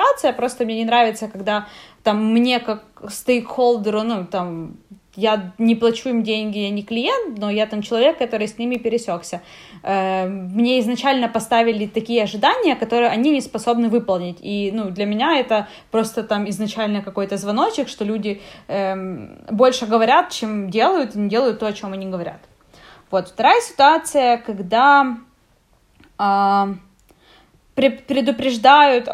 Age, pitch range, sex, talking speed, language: 20-39, 205-245 Hz, female, 135 wpm, Russian